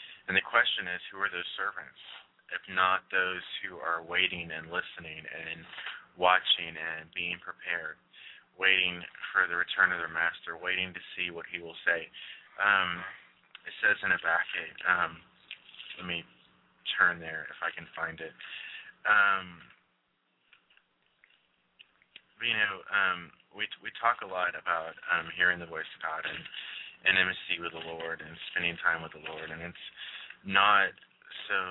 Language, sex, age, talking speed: English, male, 20-39, 155 wpm